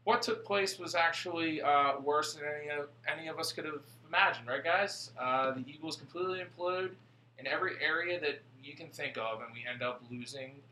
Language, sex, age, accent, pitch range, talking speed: English, male, 20-39, American, 120-145 Hz, 195 wpm